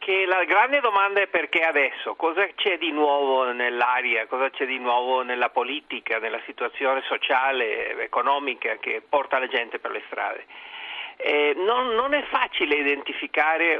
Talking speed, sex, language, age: 150 wpm, male, Italian, 50-69